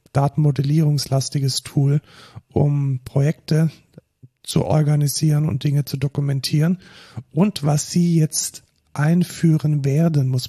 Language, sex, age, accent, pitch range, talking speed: German, male, 50-69, German, 135-155 Hz, 95 wpm